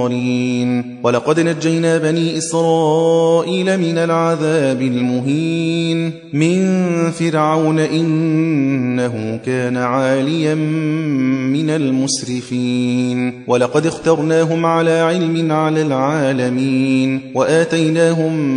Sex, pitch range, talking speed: male, 130-165 Hz, 70 wpm